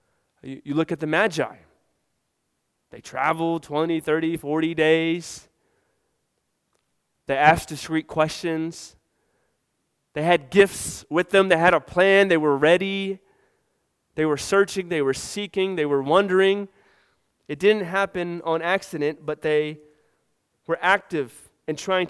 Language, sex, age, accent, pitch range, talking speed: English, male, 30-49, American, 150-190 Hz, 130 wpm